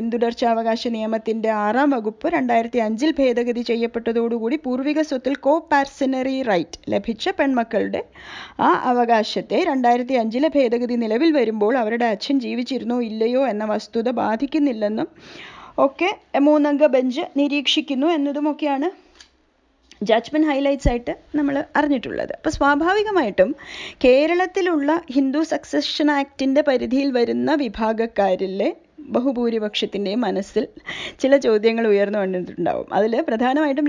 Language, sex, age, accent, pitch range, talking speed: English, female, 20-39, Indian, 230-295 Hz, 55 wpm